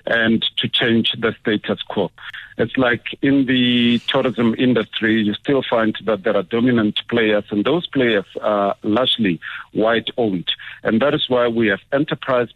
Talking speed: 160 wpm